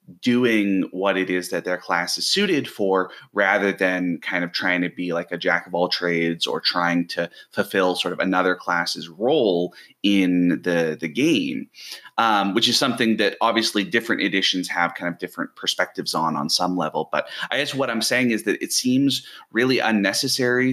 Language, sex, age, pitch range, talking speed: English, male, 30-49, 90-105 Hz, 190 wpm